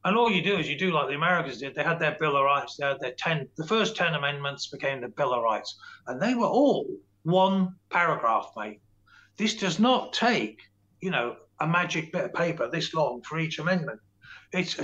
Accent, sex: British, male